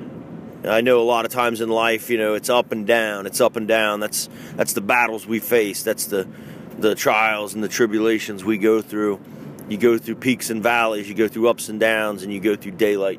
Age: 30-49